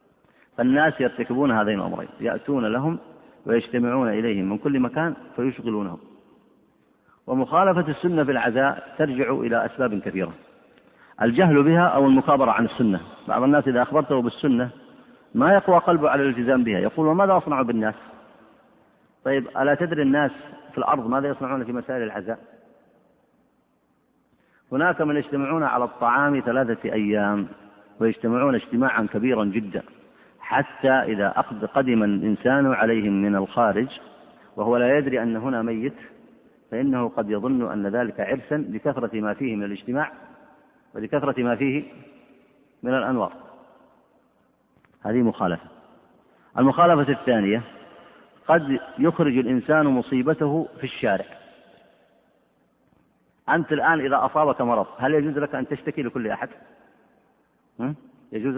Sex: male